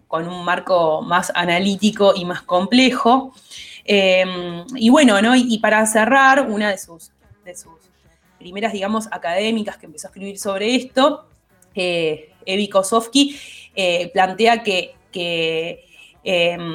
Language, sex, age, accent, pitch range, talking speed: Spanish, female, 20-39, Argentinian, 180-230 Hz, 135 wpm